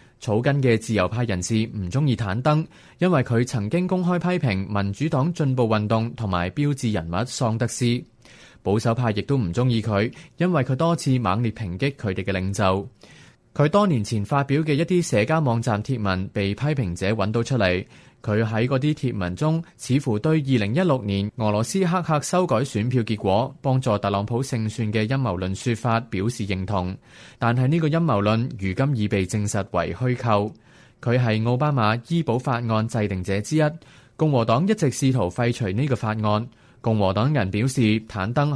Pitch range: 105-140 Hz